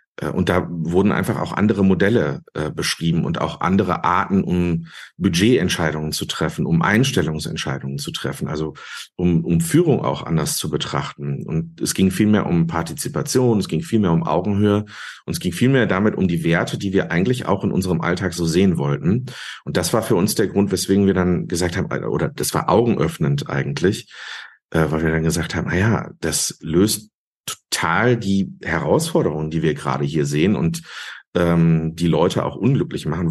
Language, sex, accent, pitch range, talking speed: German, male, German, 80-95 Hz, 180 wpm